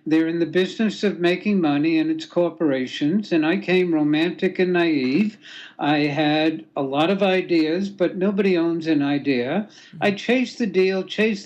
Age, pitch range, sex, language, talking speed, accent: 60-79, 155-190 Hz, male, English, 170 wpm, American